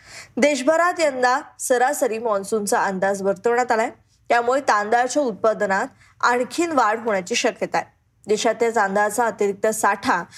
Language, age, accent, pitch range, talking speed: Marathi, 20-39, native, 220-290 Hz, 110 wpm